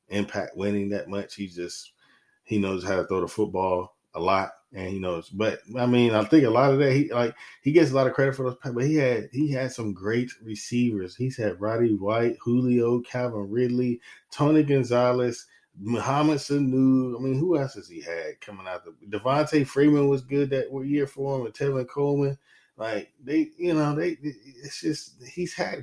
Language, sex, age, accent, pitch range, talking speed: English, male, 20-39, American, 110-150 Hz, 200 wpm